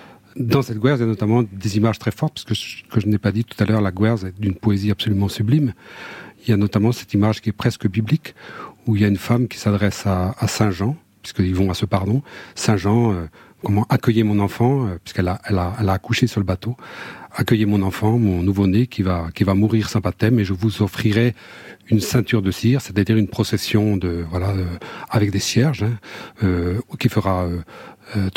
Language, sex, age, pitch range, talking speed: French, male, 40-59, 95-115 Hz, 225 wpm